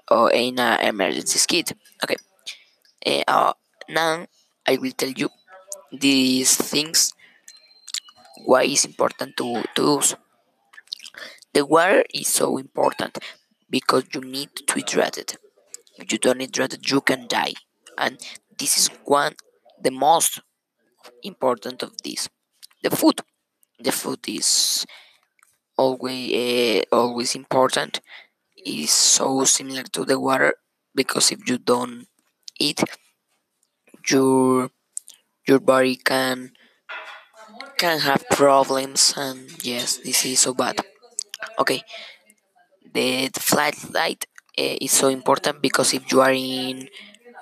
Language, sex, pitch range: English, female, 130-140 Hz